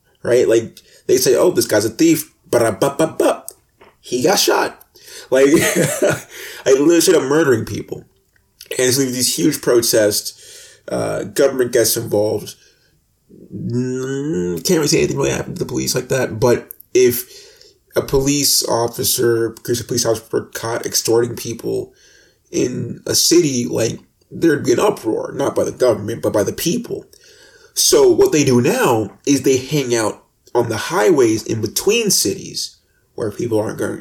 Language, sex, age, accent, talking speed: English, male, 30-49, American, 155 wpm